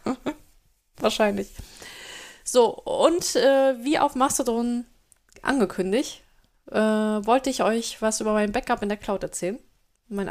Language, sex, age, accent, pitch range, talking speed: German, female, 20-39, German, 215-265 Hz, 120 wpm